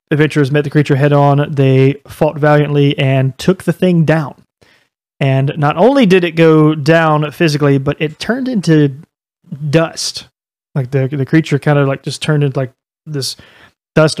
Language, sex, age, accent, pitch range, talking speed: English, male, 30-49, American, 135-155 Hz, 170 wpm